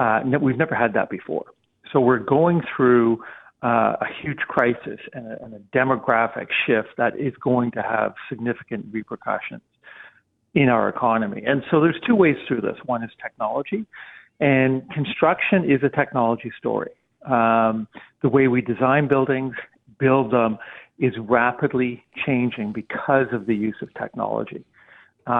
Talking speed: 150 wpm